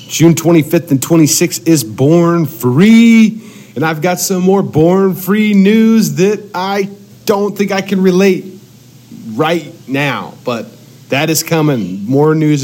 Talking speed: 140 wpm